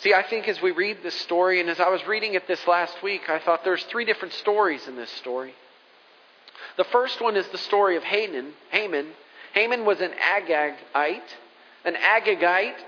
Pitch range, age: 160-200 Hz, 40-59